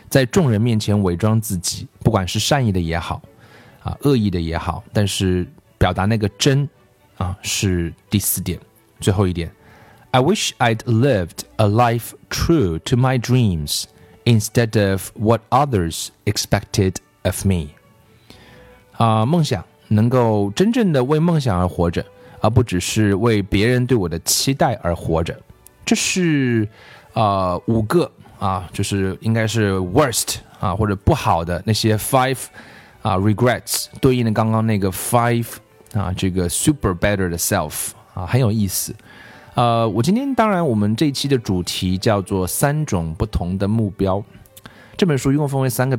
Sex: male